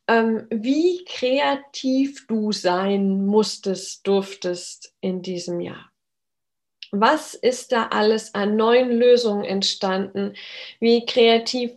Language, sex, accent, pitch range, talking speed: German, female, German, 205-260 Hz, 95 wpm